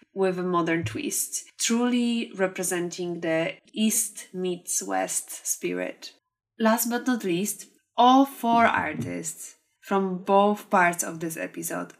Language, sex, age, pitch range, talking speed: English, female, 20-39, 180-220 Hz, 120 wpm